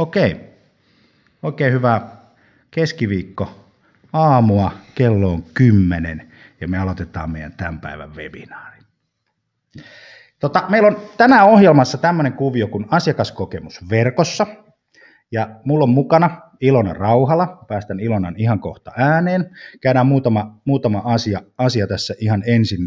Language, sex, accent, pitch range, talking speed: Finnish, male, native, 100-140 Hz, 120 wpm